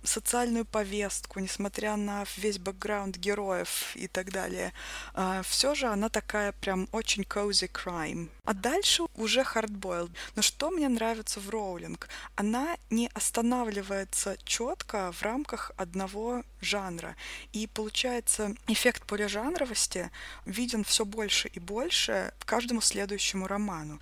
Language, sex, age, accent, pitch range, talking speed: Russian, female, 20-39, native, 200-240 Hz, 120 wpm